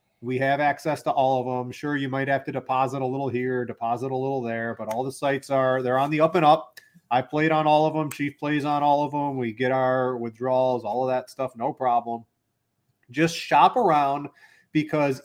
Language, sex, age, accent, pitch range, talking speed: English, male, 30-49, American, 125-155 Hz, 225 wpm